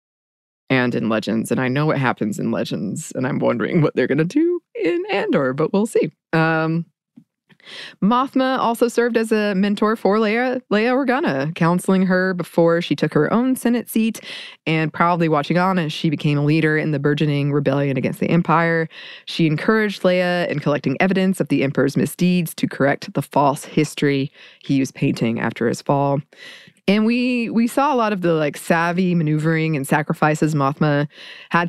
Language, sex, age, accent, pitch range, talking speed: English, female, 20-39, American, 150-200 Hz, 180 wpm